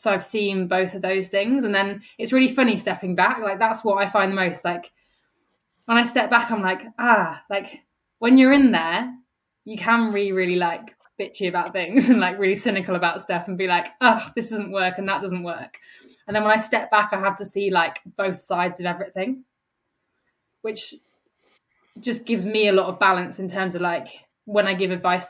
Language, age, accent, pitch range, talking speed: English, 20-39, British, 180-215 Hz, 215 wpm